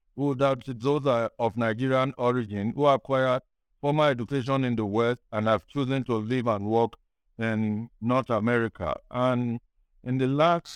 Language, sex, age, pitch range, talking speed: English, male, 60-79, 110-135 Hz, 150 wpm